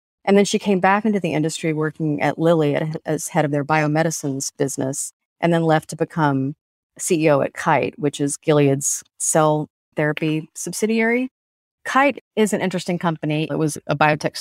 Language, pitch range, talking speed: English, 150-175 Hz, 165 wpm